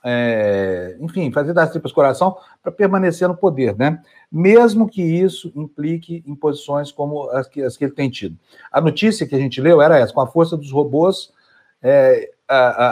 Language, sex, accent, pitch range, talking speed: Portuguese, male, Brazilian, 130-180 Hz, 185 wpm